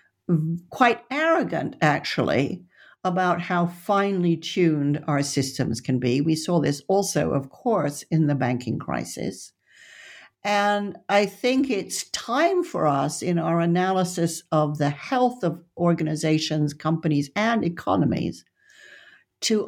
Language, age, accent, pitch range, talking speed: English, 60-79, American, 150-200 Hz, 120 wpm